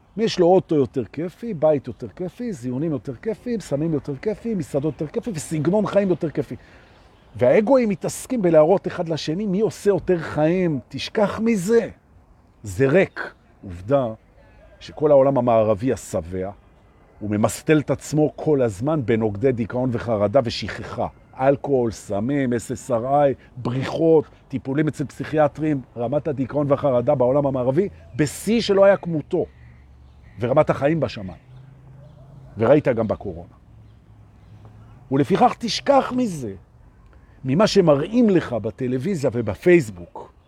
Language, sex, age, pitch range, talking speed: Hebrew, male, 50-69, 115-180 Hz, 105 wpm